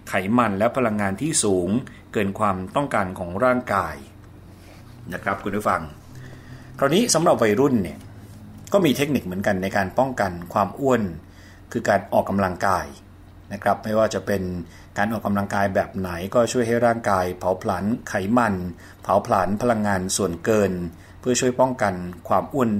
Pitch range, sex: 95-115 Hz, male